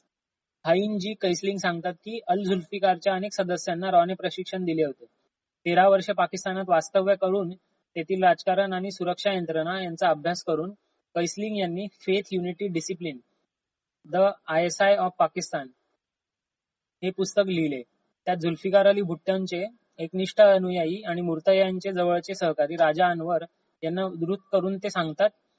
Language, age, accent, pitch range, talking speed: Marathi, 20-39, native, 170-195 Hz, 120 wpm